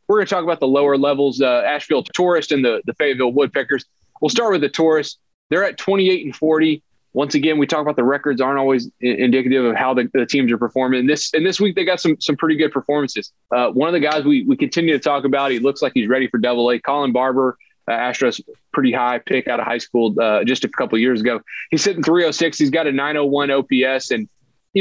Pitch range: 125-155 Hz